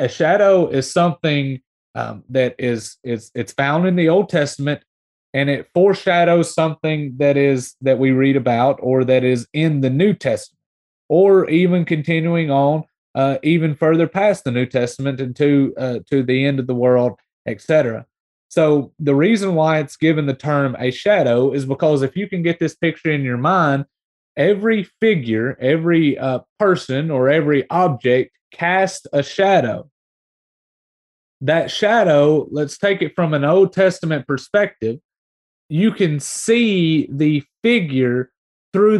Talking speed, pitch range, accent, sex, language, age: 155 wpm, 135-185 Hz, American, male, English, 30-49